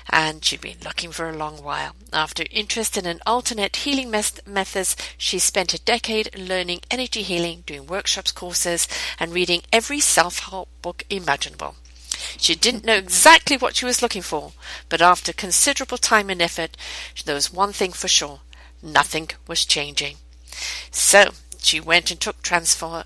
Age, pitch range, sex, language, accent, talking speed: 50-69, 160-225 Hz, female, English, British, 160 wpm